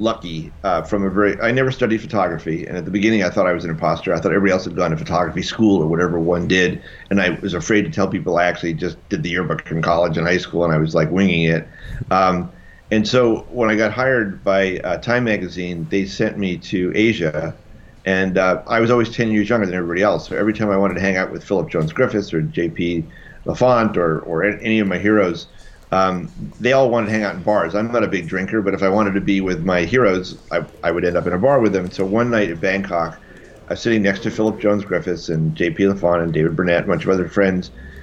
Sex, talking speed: male, 255 wpm